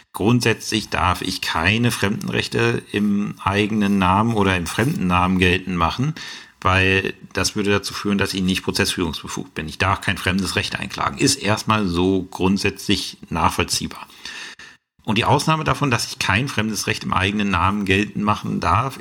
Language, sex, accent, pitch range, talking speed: German, male, German, 95-115 Hz, 160 wpm